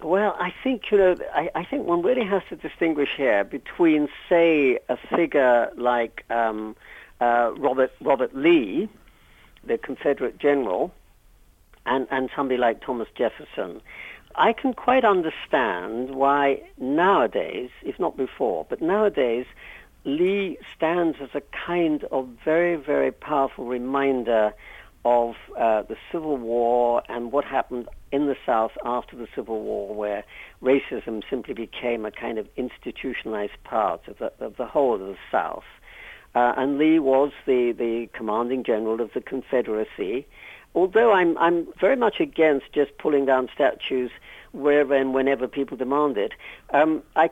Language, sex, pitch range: English, female, 120-170 Hz